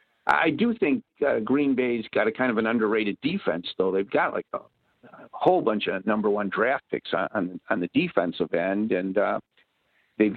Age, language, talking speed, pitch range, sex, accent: 50-69, English, 210 wpm, 110-135 Hz, male, American